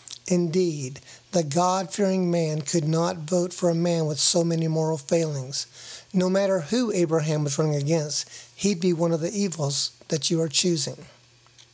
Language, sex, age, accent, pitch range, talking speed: English, male, 50-69, American, 155-190 Hz, 165 wpm